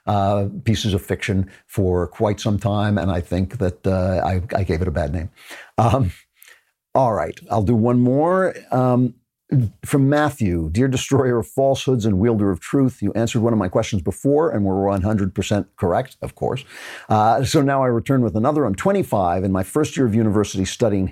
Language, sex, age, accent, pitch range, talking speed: English, male, 50-69, American, 95-120 Hz, 190 wpm